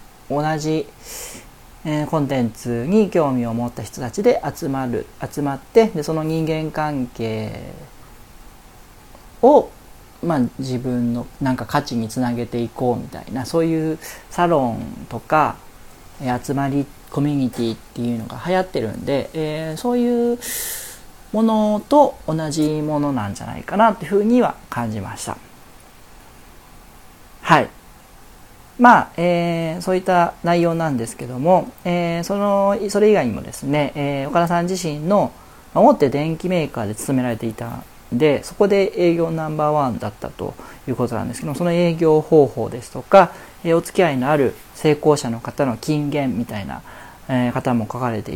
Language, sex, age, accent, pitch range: Japanese, male, 40-59, native, 125-170 Hz